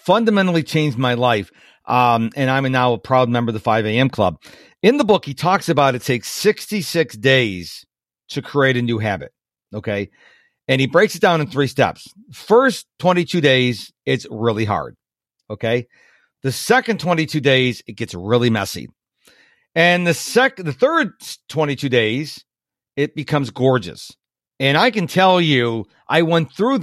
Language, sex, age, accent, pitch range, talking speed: English, male, 50-69, American, 125-175 Hz, 165 wpm